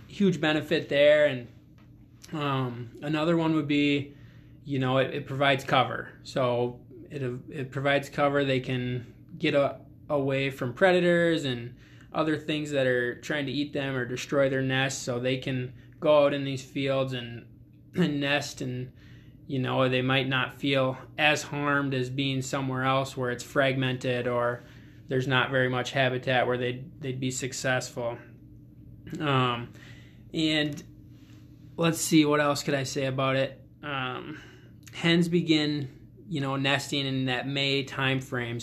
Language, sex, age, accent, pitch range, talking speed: English, male, 20-39, American, 125-145 Hz, 155 wpm